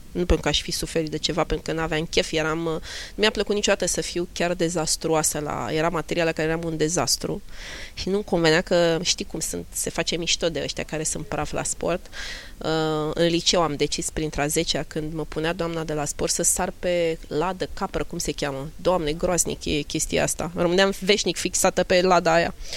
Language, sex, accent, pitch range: Romanian, female, native, 160-215 Hz